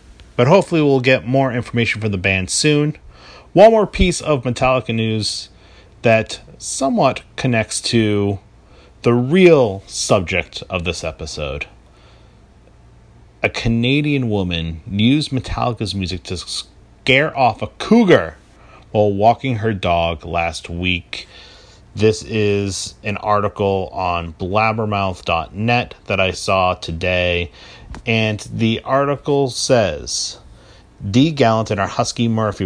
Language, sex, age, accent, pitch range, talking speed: English, male, 30-49, American, 95-120 Hz, 115 wpm